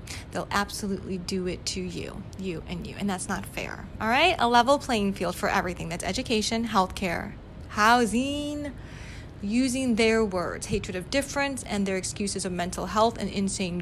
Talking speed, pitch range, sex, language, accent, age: 170 wpm, 195-230 Hz, female, English, American, 20-39